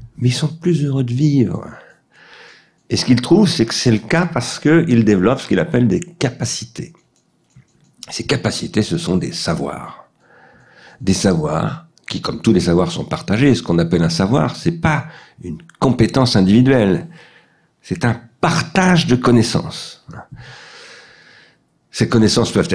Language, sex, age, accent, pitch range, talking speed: French, male, 50-69, French, 100-145 Hz, 155 wpm